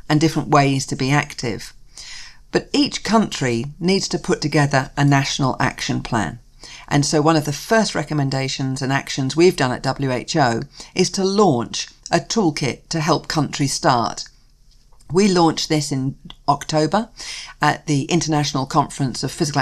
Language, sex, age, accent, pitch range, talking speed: English, female, 50-69, British, 135-165 Hz, 155 wpm